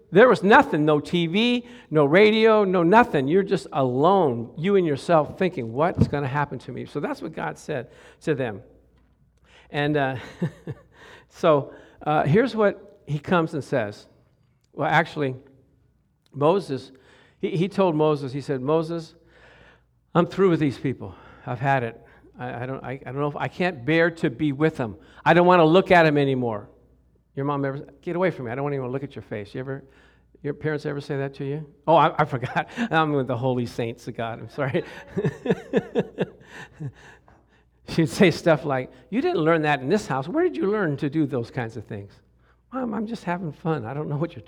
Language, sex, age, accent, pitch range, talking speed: English, male, 50-69, American, 130-165 Hz, 200 wpm